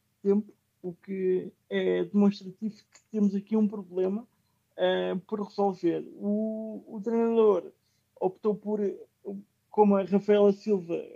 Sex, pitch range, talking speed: male, 185-205 Hz, 120 wpm